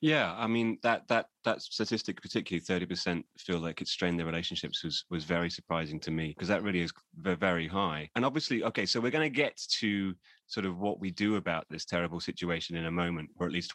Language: English